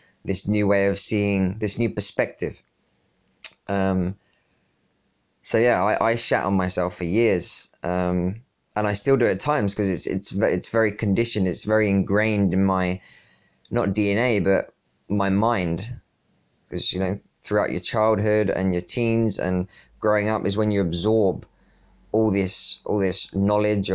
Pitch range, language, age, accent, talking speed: 95-105 Hz, English, 20-39, British, 160 wpm